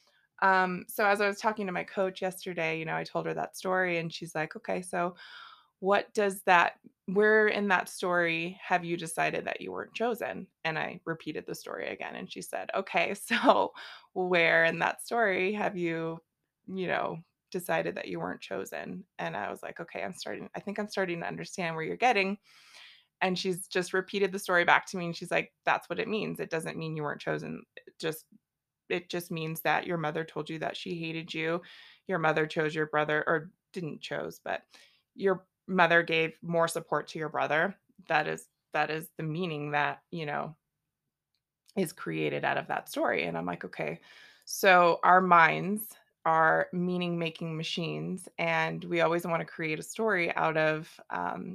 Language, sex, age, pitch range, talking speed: English, female, 20-39, 160-195 Hz, 190 wpm